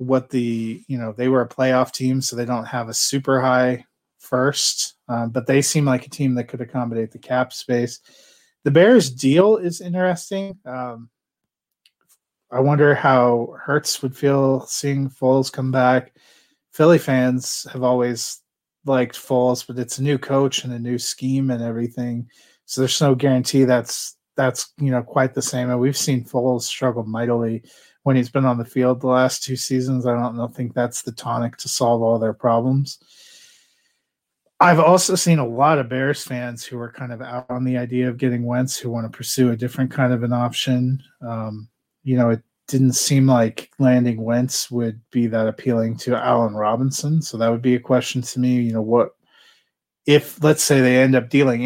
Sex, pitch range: male, 120-135 Hz